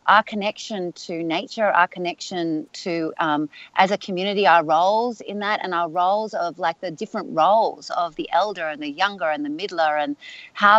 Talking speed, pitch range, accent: 190 wpm, 165-215 Hz, Australian